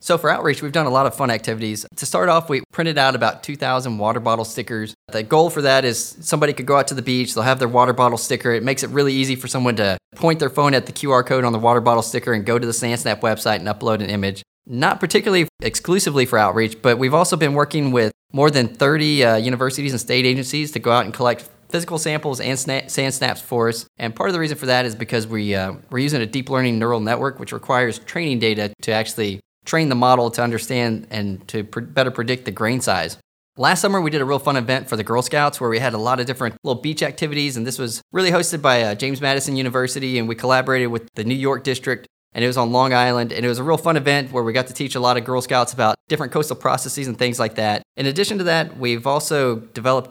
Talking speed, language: 255 wpm, English